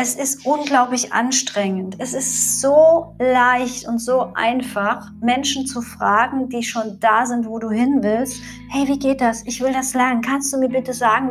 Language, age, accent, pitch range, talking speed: German, 50-69, German, 220-260 Hz, 185 wpm